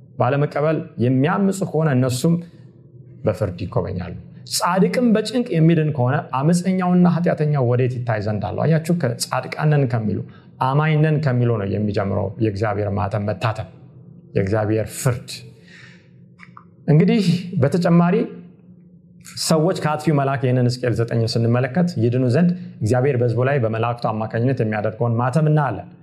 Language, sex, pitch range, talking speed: Amharic, male, 115-165 Hz, 100 wpm